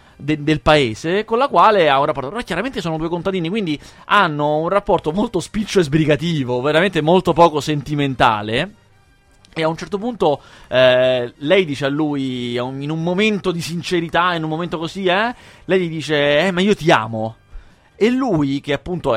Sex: male